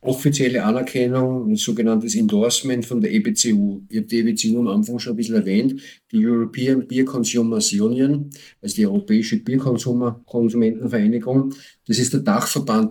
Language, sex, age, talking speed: German, male, 50-69, 150 wpm